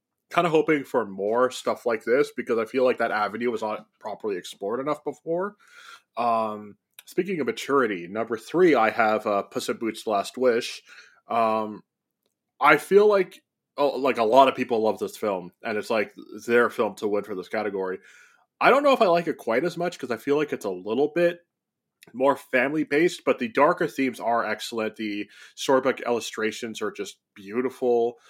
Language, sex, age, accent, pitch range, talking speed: English, male, 20-39, American, 110-155 Hz, 190 wpm